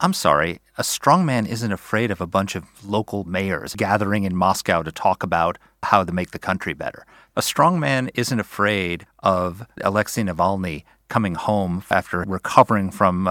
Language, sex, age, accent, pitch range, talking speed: English, male, 40-59, American, 95-125 Hz, 170 wpm